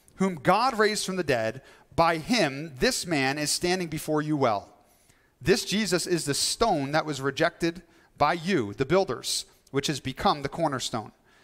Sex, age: male, 40-59